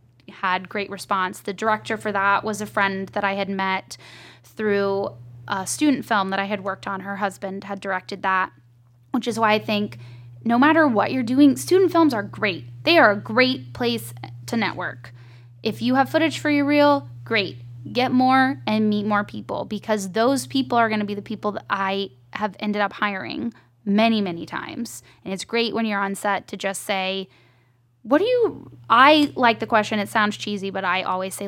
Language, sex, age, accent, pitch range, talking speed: English, female, 10-29, American, 185-235 Hz, 200 wpm